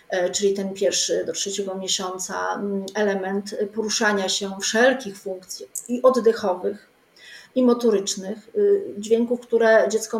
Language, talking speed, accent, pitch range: Polish, 105 wpm, native, 205-245 Hz